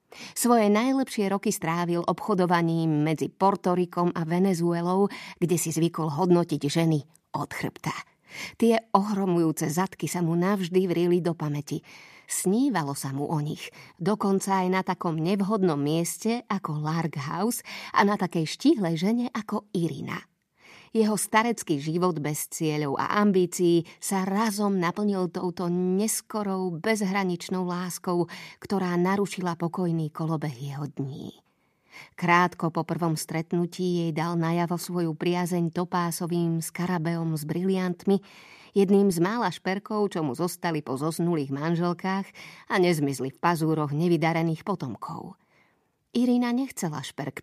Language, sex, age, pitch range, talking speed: Slovak, female, 30-49, 165-195 Hz, 125 wpm